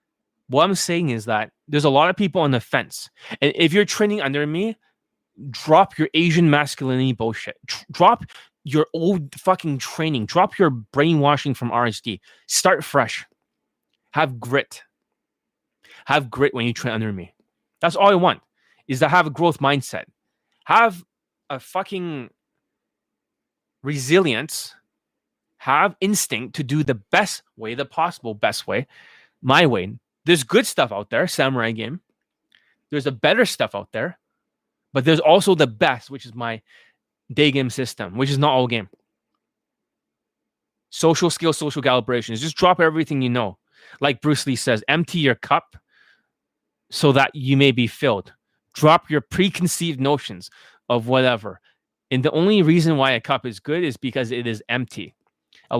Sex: male